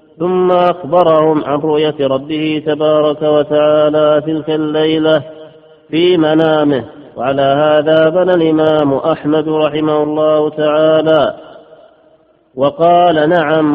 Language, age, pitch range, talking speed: Arabic, 40-59, 150-155 Hz, 90 wpm